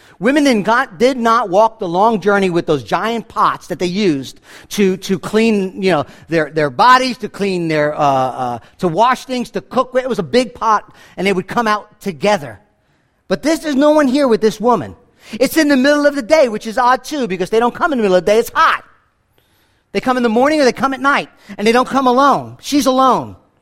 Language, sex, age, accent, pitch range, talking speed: English, male, 40-59, American, 195-275 Hz, 240 wpm